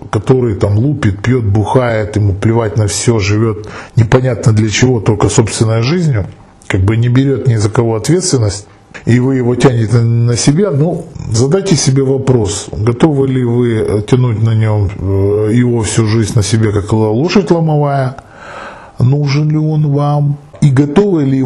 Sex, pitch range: male, 110-150 Hz